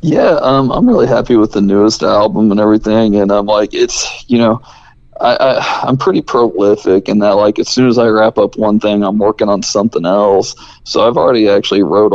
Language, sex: English, male